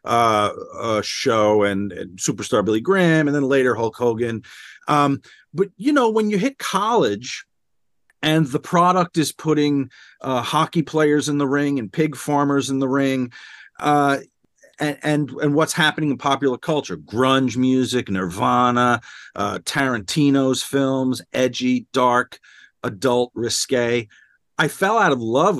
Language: English